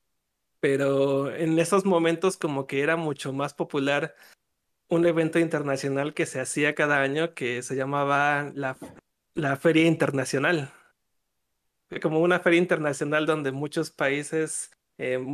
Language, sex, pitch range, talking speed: Spanish, male, 140-165 Hz, 130 wpm